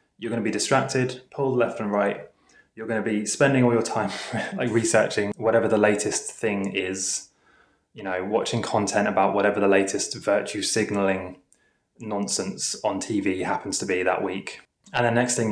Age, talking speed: 20-39, 170 wpm